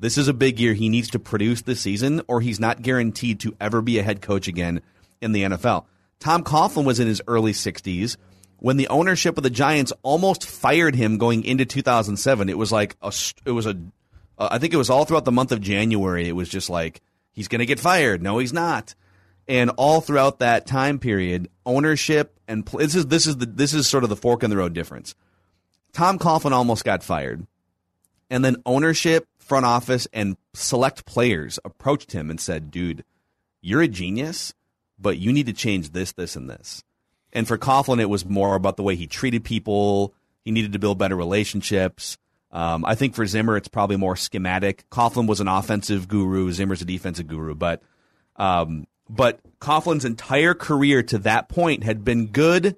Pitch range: 95-135 Hz